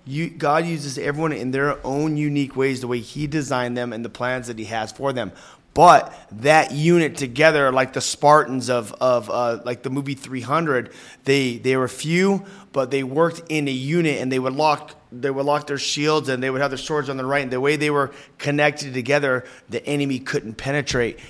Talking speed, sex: 210 wpm, male